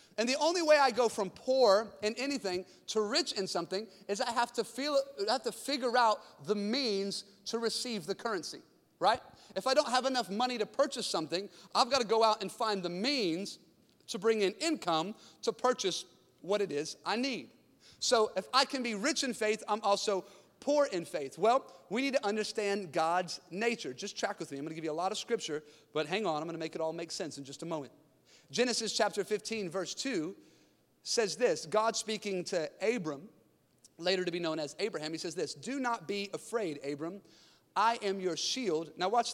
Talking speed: 210 wpm